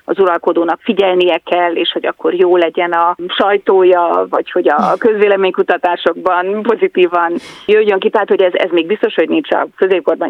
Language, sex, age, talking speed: Hungarian, female, 30-49, 165 wpm